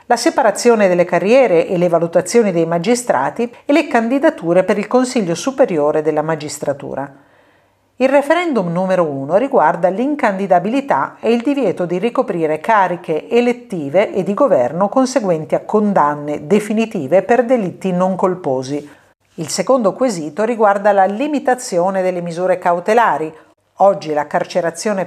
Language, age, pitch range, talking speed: Italian, 50-69, 175-235 Hz, 130 wpm